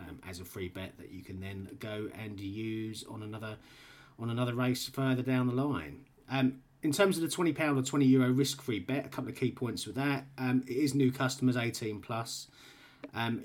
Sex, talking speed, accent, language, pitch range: male, 220 wpm, British, English, 100-135 Hz